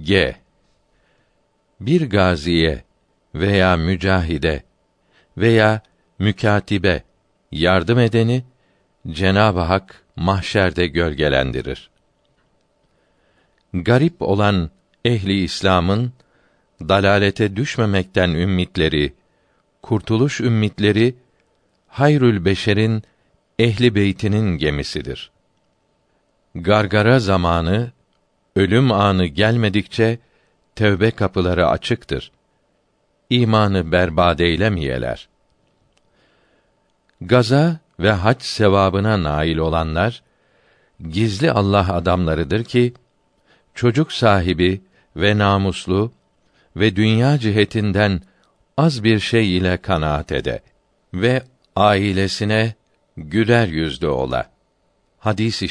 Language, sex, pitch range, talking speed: Turkish, male, 90-115 Hz, 70 wpm